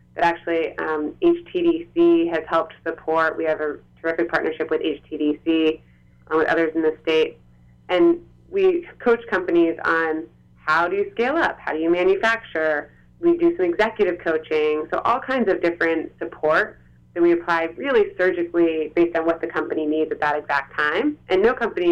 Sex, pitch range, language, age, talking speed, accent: female, 155-190 Hz, English, 20-39, 170 wpm, American